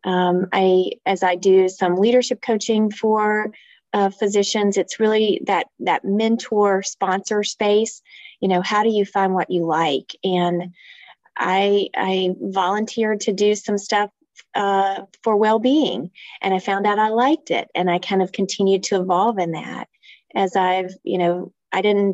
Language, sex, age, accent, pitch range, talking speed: English, female, 30-49, American, 185-215 Hz, 165 wpm